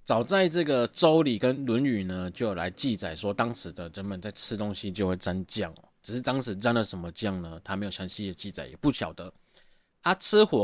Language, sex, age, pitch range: Chinese, male, 20-39, 100-130 Hz